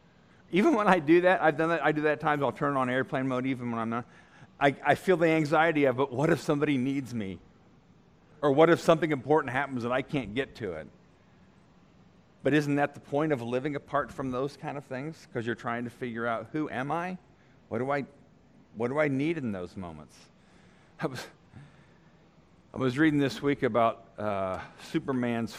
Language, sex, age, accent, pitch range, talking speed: English, male, 40-59, American, 115-150 Hz, 205 wpm